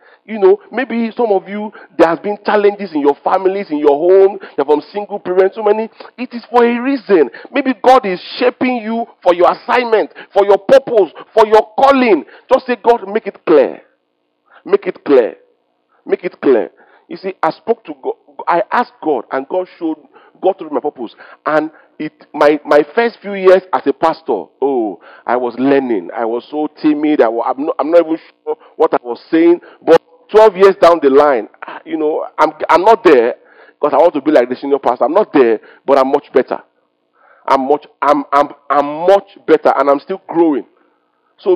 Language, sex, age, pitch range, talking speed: English, male, 50-69, 155-250 Hz, 200 wpm